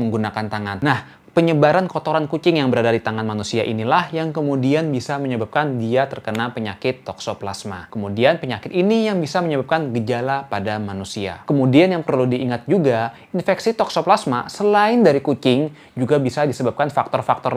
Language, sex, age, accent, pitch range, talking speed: Indonesian, male, 20-39, native, 120-160 Hz, 145 wpm